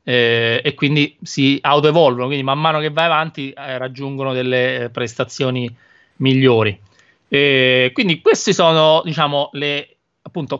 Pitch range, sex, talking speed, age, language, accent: 130-170 Hz, male, 130 wpm, 30-49, Italian, native